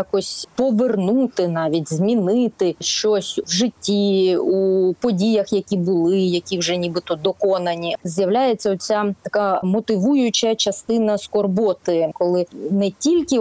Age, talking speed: 20-39, 105 wpm